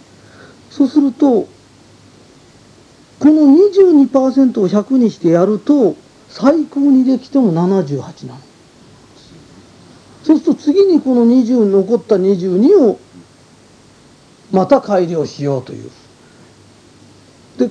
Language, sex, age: Japanese, male, 40-59